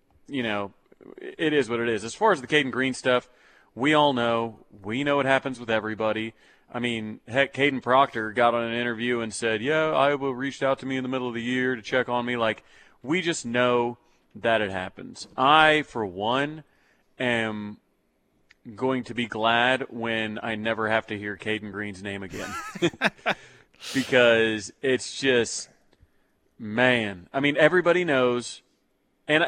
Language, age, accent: English, 30-49, American